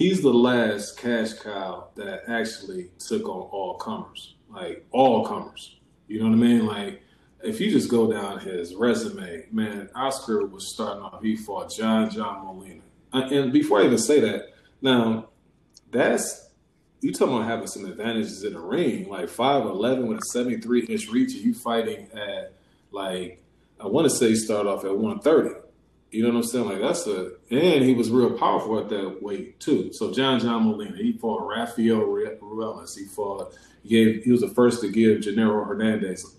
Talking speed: 190 wpm